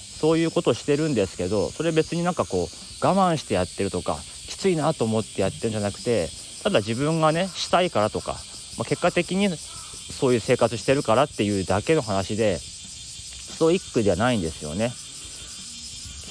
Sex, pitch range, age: male, 95-145 Hz, 30-49